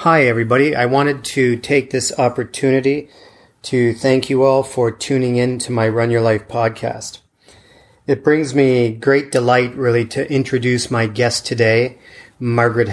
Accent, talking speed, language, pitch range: American, 155 wpm, English, 115-130 Hz